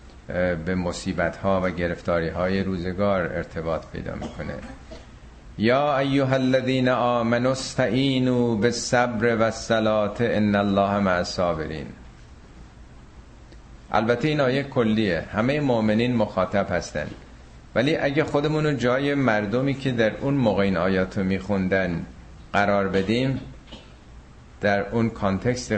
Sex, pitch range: male, 90-115 Hz